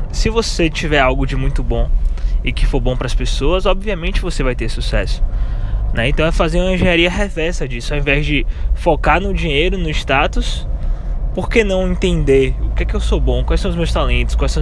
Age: 20-39